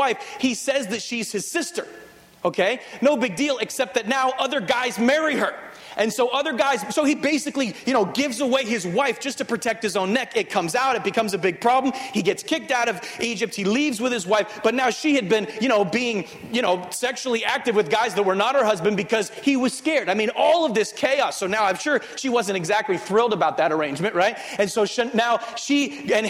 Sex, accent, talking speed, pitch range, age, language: male, American, 230 wpm, 190-245 Hz, 30-49, English